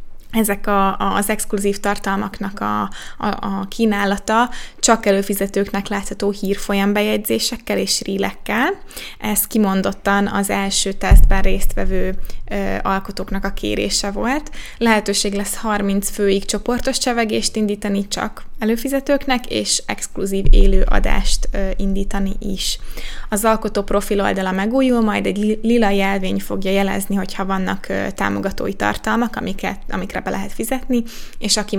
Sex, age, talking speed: female, 20-39, 120 wpm